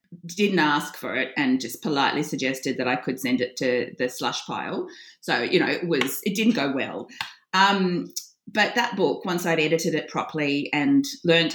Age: 30-49